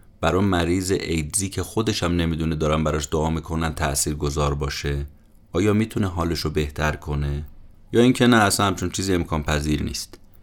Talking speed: 155 wpm